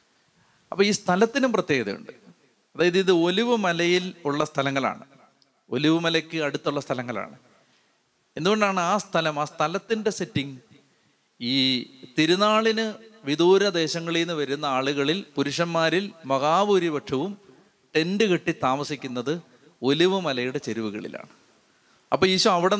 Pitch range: 145-180 Hz